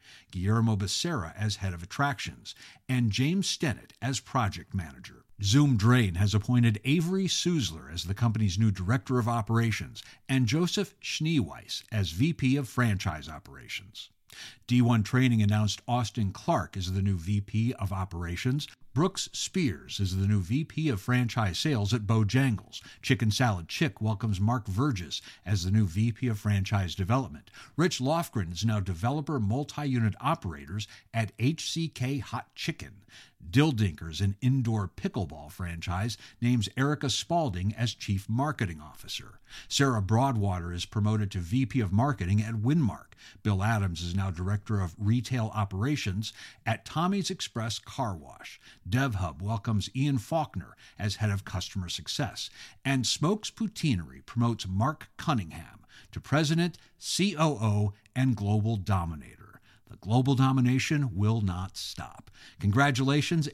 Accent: American